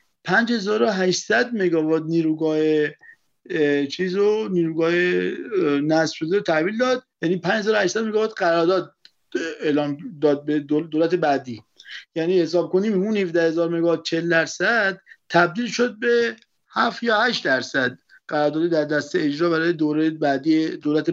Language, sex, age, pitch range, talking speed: Persian, male, 50-69, 165-215 Hz, 115 wpm